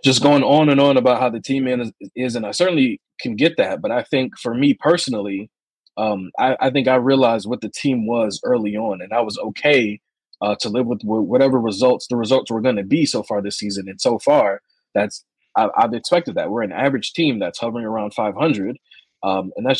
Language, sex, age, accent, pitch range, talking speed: English, male, 20-39, American, 105-135 Hz, 220 wpm